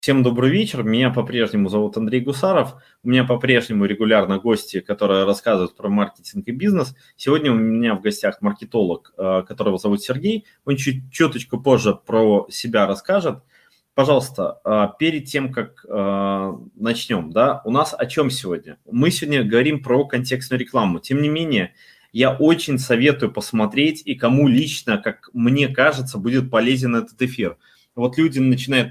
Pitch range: 110-140 Hz